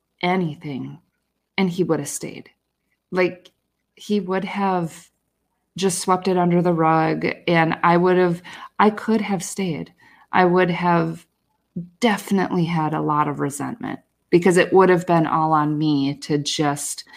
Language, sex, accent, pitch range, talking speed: English, female, American, 155-195 Hz, 150 wpm